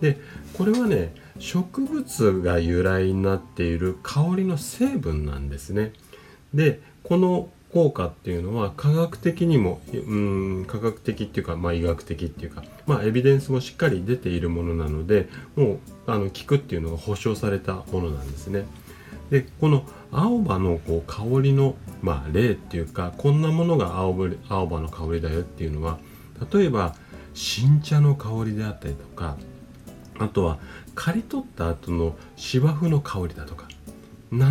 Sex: male